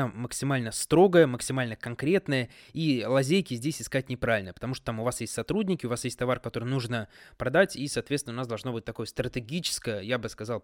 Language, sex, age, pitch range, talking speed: Russian, male, 20-39, 115-145 Hz, 190 wpm